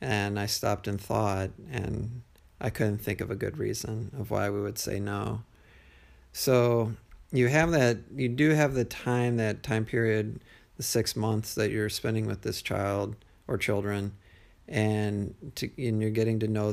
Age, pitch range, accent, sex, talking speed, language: 40-59, 105-120 Hz, American, male, 175 wpm, English